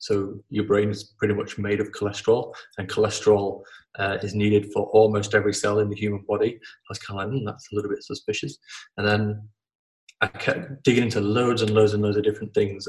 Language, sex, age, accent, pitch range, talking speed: English, male, 20-39, British, 105-110 Hz, 220 wpm